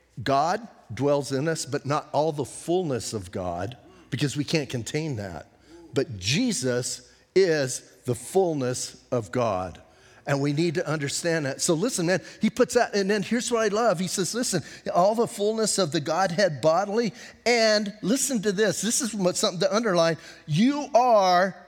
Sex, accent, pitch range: male, American, 150-215 Hz